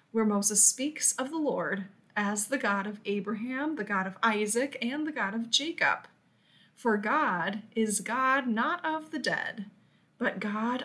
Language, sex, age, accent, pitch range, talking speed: English, female, 20-39, American, 200-265 Hz, 165 wpm